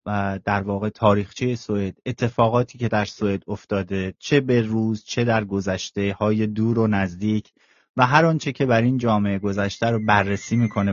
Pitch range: 110-140 Hz